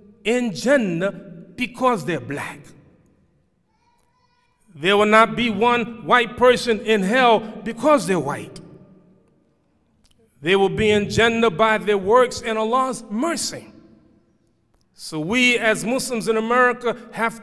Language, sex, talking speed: English, male, 115 wpm